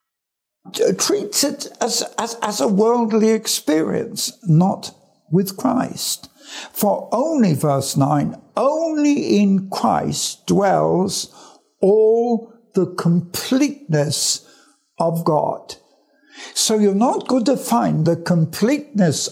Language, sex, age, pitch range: English, male, 60-79, 150-235 Hz